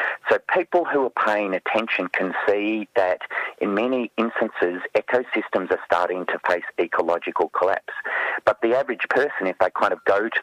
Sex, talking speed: male, 165 wpm